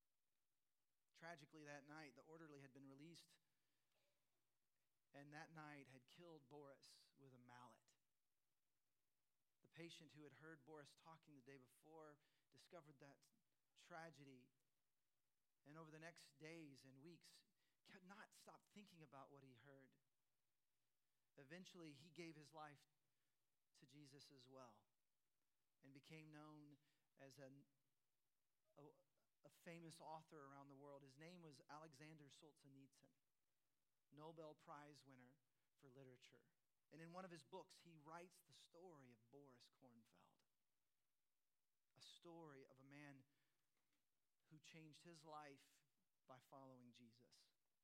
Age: 40-59